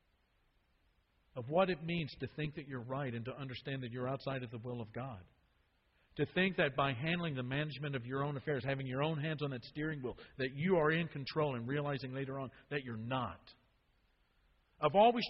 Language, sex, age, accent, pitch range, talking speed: English, male, 50-69, American, 115-170 Hz, 210 wpm